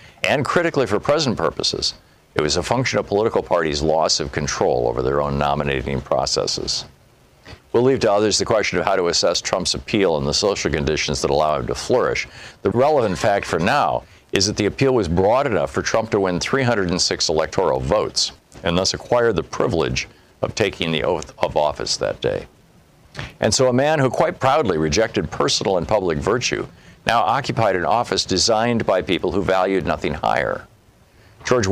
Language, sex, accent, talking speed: English, male, American, 185 wpm